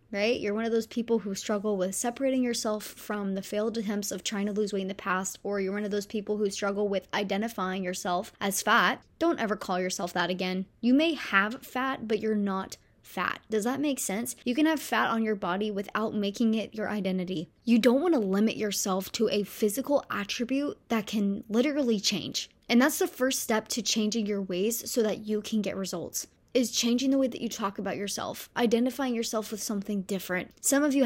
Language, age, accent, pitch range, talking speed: English, 20-39, American, 200-240 Hz, 215 wpm